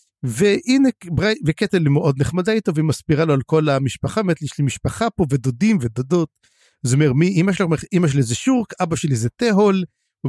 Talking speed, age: 205 wpm, 50-69